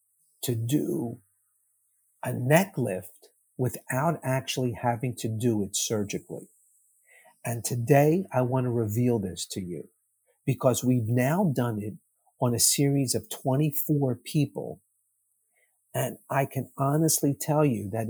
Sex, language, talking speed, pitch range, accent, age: male, English, 130 wpm, 105-140 Hz, American, 50-69